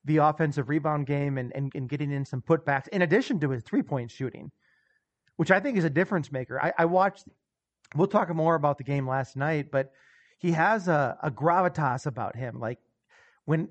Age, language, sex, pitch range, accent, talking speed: 30-49, English, male, 135-165 Hz, American, 200 wpm